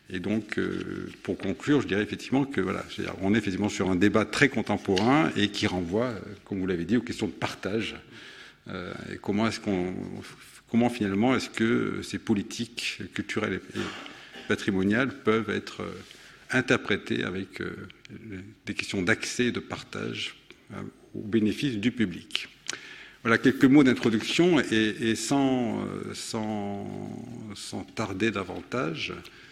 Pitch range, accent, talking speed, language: 95-115 Hz, French, 135 wpm, French